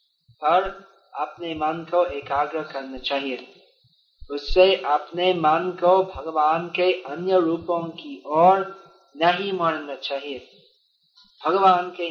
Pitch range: 140-190 Hz